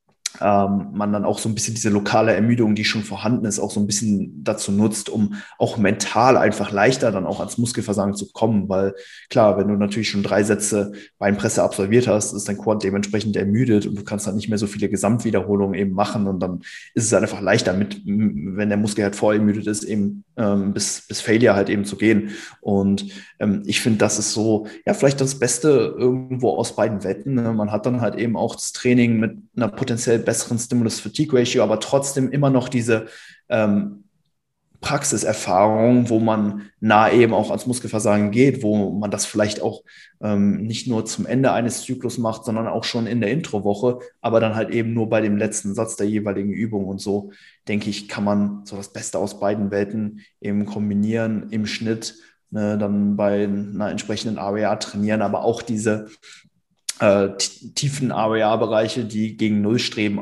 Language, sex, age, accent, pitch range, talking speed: German, male, 20-39, German, 100-115 Hz, 185 wpm